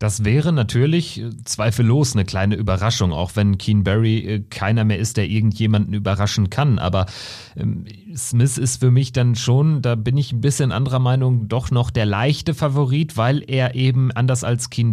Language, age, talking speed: German, 40-59, 175 wpm